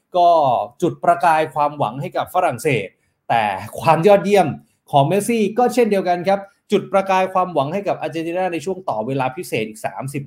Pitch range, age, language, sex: 145-205 Hz, 20-39, Thai, male